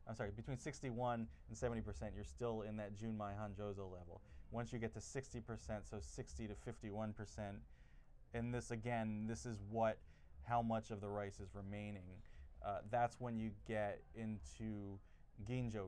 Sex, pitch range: male, 95-115 Hz